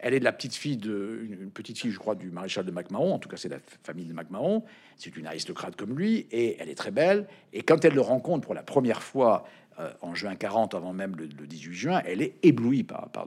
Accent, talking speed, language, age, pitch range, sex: French, 260 wpm, French, 50-69, 105-165 Hz, male